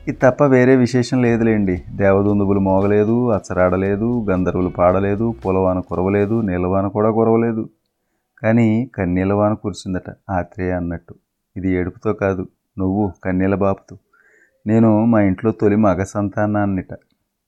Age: 30-49